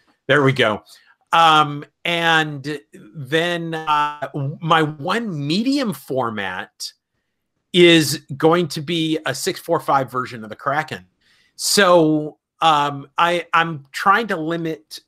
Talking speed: 115 wpm